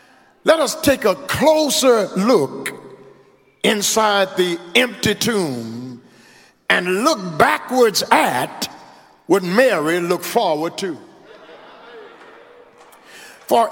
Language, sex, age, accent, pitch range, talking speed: English, male, 50-69, American, 205-310 Hz, 85 wpm